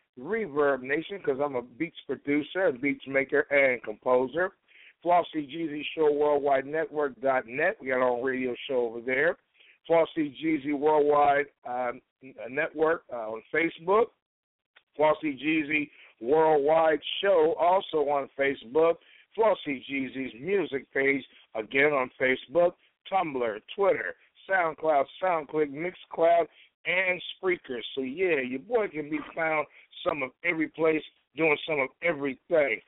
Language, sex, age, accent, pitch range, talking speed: English, male, 60-79, American, 140-175 Hz, 125 wpm